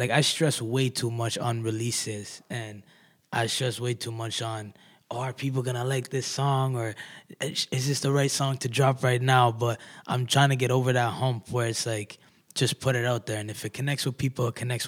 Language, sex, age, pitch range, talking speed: English, male, 20-39, 115-135 Hz, 230 wpm